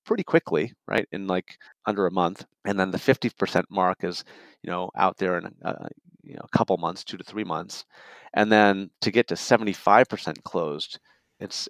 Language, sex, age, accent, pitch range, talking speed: English, male, 30-49, American, 90-105 Hz, 190 wpm